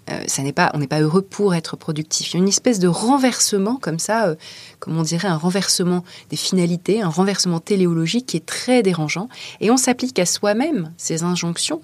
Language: French